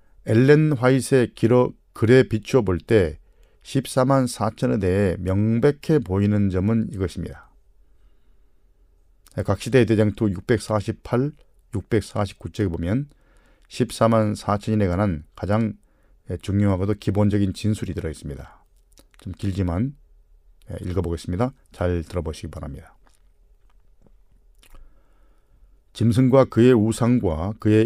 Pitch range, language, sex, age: 90-120 Hz, Korean, male, 40-59